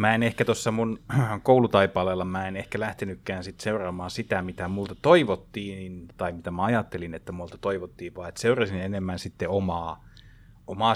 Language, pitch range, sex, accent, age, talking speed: Finnish, 90-115 Hz, male, native, 30-49, 165 wpm